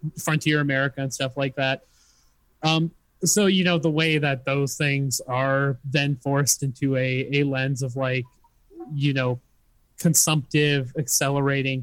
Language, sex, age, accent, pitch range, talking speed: English, male, 20-39, American, 130-155 Hz, 140 wpm